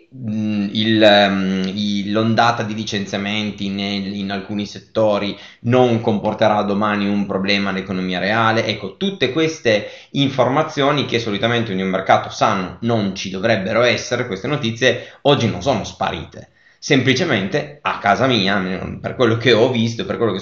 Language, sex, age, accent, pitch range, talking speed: Italian, male, 20-39, native, 100-120 Hz, 140 wpm